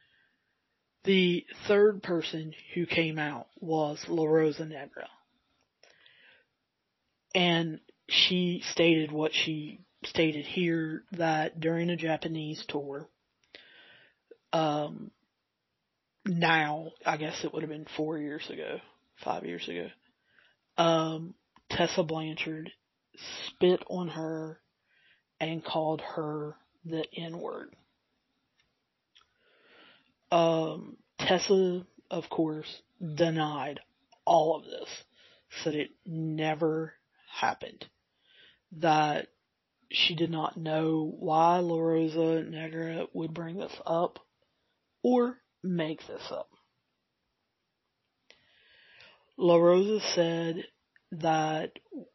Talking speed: 90 wpm